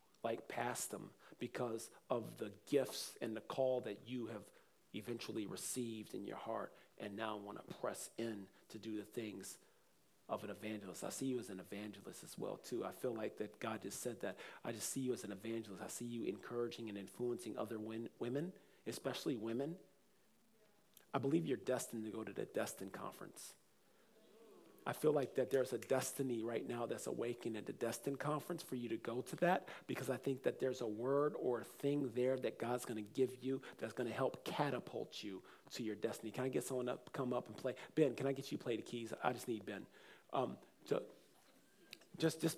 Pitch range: 110-135 Hz